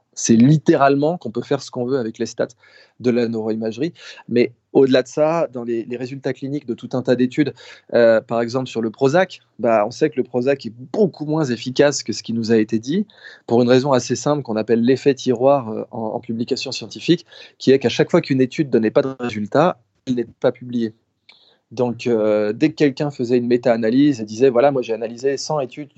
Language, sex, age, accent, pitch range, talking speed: French, male, 20-39, French, 115-140 Hz, 225 wpm